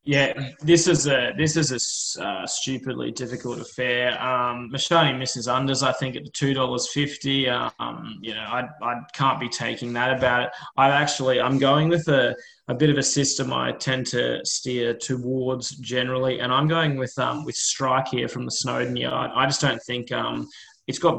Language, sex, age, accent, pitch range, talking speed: English, male, 20-39, Australian, 120-135 Hz, 195 wpm